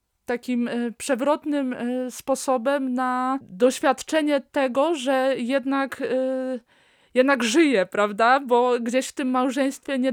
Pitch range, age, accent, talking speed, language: 230-270 Hz, 20-39, native, 100 wpm, Polish